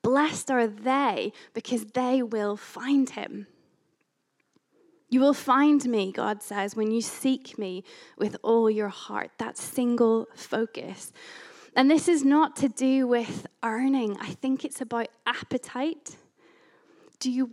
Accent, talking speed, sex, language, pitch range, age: British, 135 wpm, female, English, 215-260 Hz, 20-39